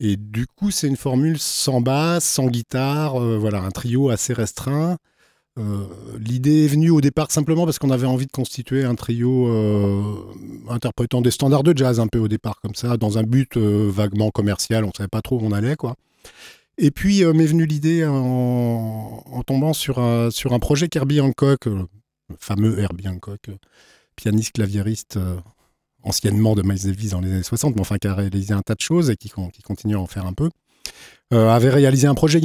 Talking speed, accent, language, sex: 210 wpm, French, French, male